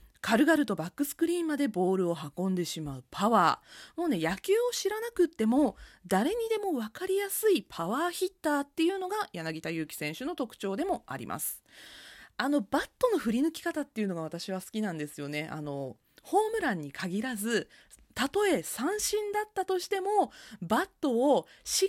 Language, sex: Japanese, female